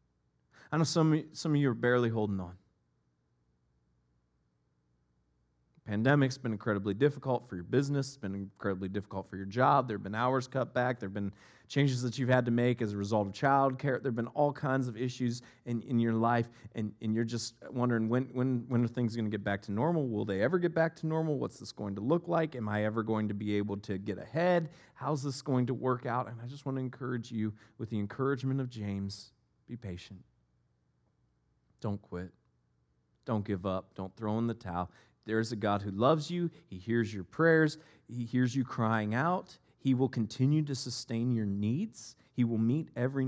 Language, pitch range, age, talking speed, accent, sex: English, 95-130 Hz, 30-49, 210 wpm, American, male